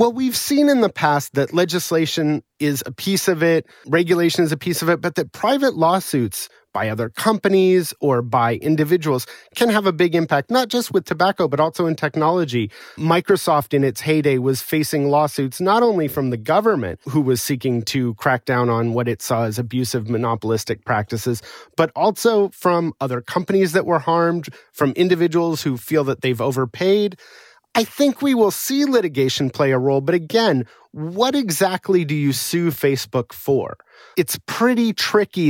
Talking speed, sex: 175 wpm, male